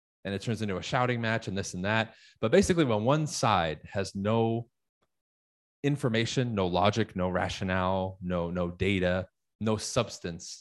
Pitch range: 95-115 Hz